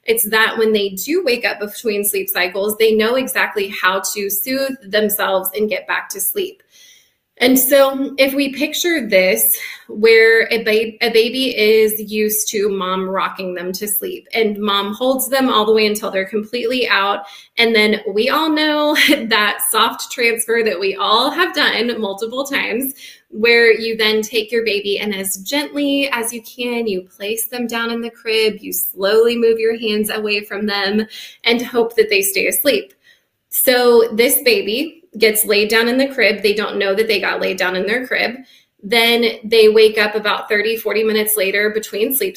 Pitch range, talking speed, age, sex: 210-270 Hz, 185 wpm, 20-39, female